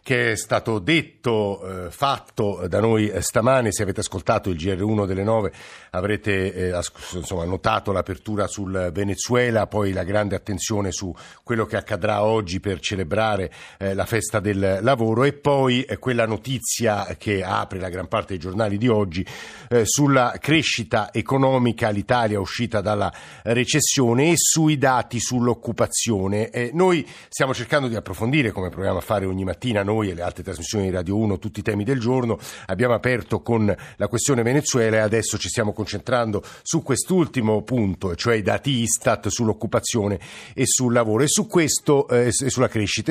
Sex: male